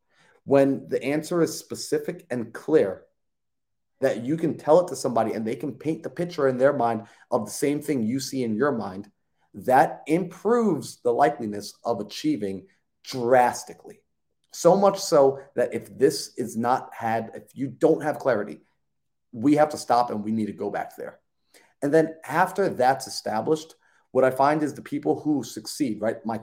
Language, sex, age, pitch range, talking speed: English, male, 30-49, 120-160 Hz, 180 wpm